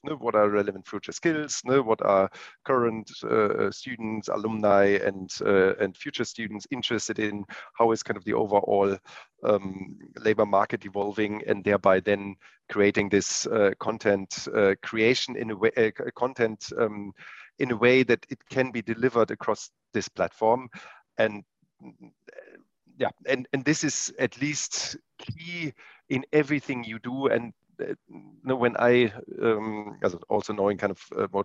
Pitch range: 100-125 Hz